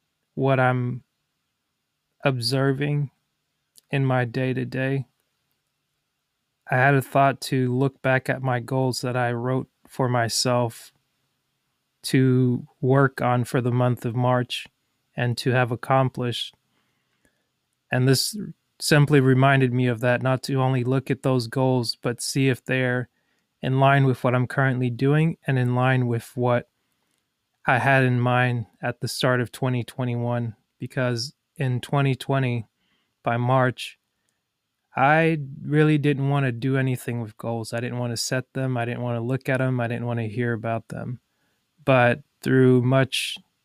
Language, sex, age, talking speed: English, male, 20-39, 150 wpm